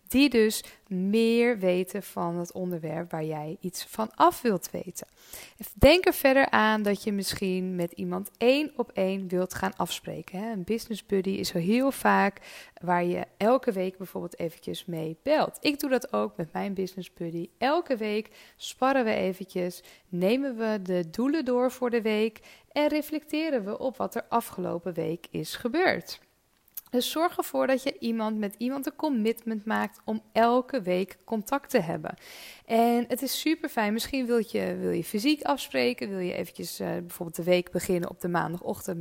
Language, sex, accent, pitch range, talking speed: Dutch, female, Dutch, 180-250 Hz, 175 wpm